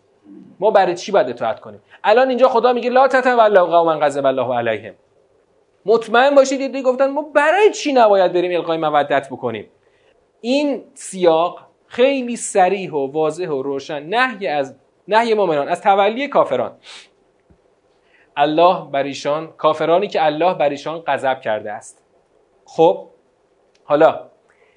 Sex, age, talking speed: male, 40-59, 130 wpm